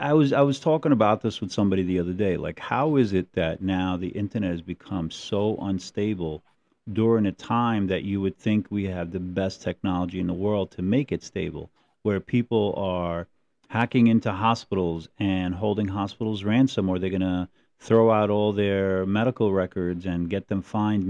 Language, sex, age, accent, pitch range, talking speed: English, male, 40-59, American, 95-115 Hz, 190 wpm